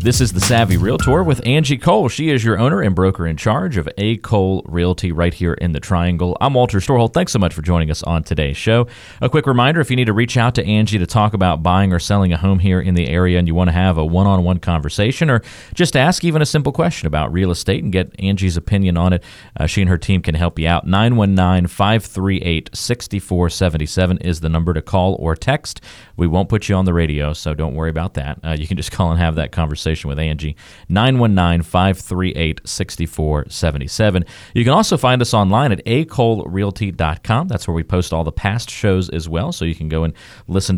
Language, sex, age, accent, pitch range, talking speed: English, male, 40-59, American, 85-110 Hz, 220 wpm